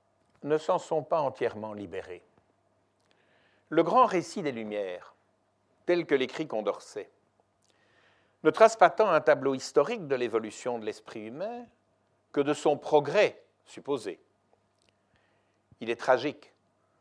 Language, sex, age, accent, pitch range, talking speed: French, male, 60-79, French, 115-180 Hz, 125 wpm